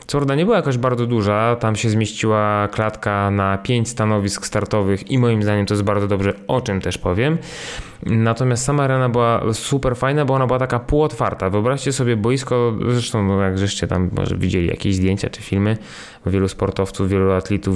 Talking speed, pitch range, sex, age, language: 180 wpm, 100-125 Hz, male, 20-39, Polish